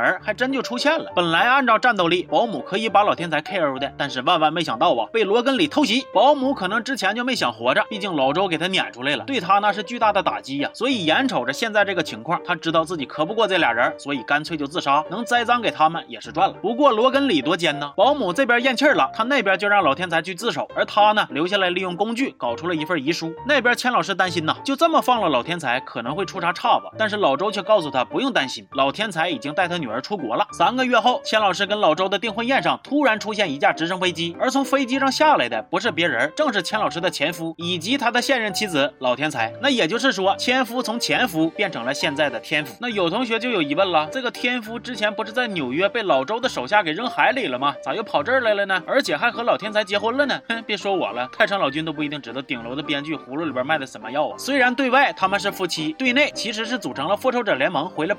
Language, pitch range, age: Chinese, 180-270 Hz, 30-49